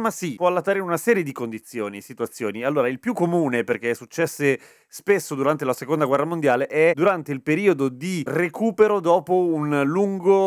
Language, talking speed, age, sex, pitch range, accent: Italian, 185 wpm, 30-49, male, 115-165 Hz, native